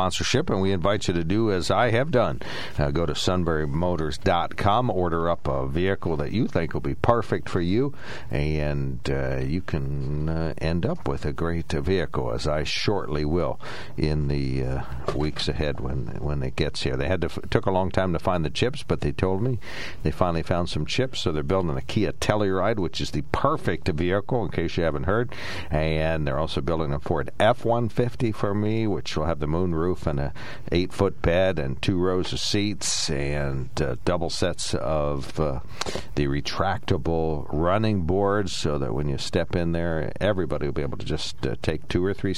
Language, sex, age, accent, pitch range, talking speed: English, male, 60-79, American, 75-95 Hz, 205 wpm